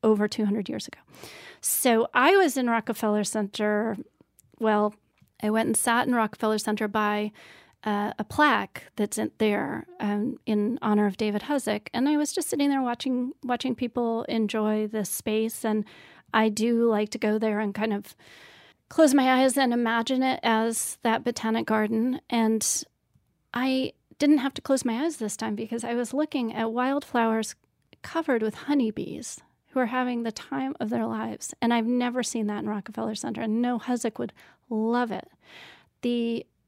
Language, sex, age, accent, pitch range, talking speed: English, female, 30-49, American, 215-250 Hz, 170 wpm